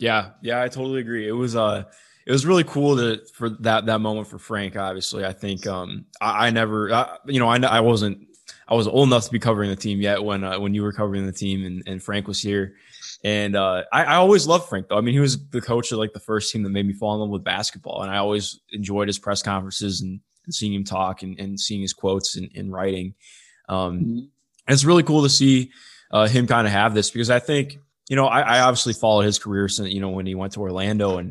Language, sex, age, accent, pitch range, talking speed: English, male, 20-39, American, 100-120 Hz, 255 wpm